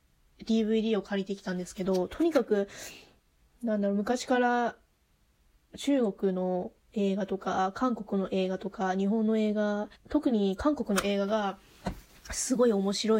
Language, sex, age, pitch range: Japanese, female, 20-39, 195-250 Hz